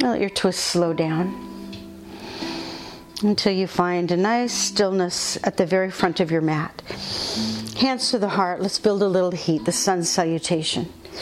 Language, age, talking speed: English, 50-69, 160 wpm